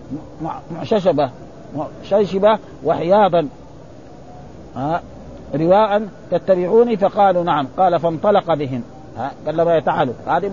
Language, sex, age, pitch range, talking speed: Arabic, male, 50-69, 175-235 Hz, 110 wpm